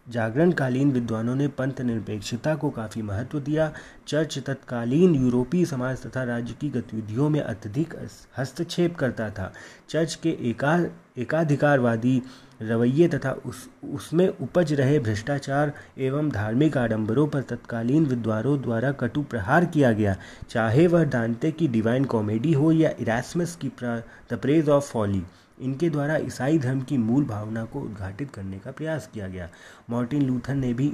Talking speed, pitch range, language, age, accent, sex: 145 wpm, 115-145 Hz, Hindi, 30-49, native, male